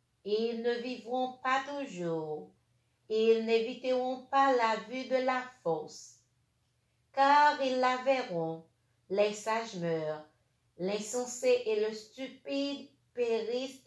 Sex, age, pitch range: female, 50-69, 170-245 Hz